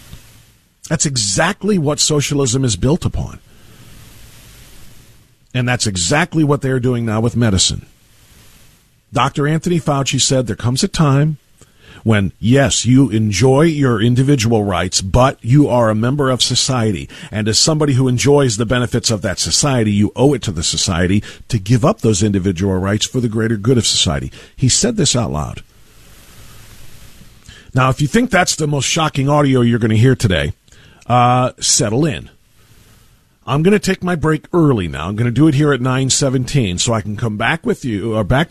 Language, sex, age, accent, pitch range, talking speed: English, male, 50-69, American, 110-140 Hz, 180 wpm